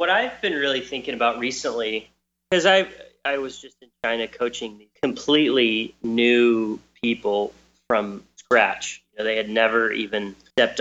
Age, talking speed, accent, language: 30-49, 150 wpm, American, English